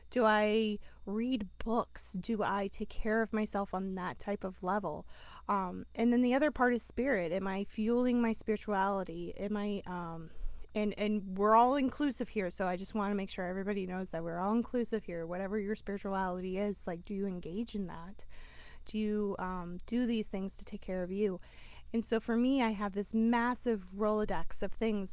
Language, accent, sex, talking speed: English, American, female, 200 wpm